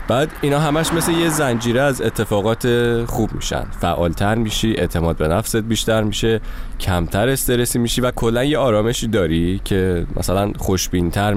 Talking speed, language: 150 wpm, Persian